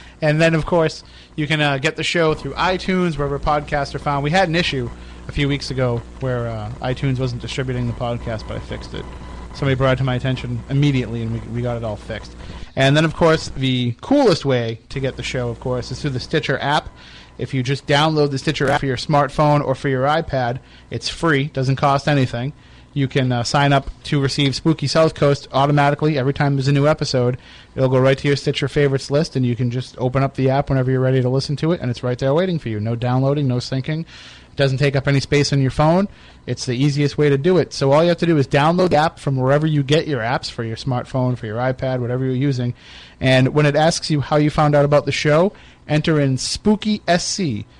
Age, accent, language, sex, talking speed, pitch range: 30-49, American, English, male, 245 wpm, 125-150 Hz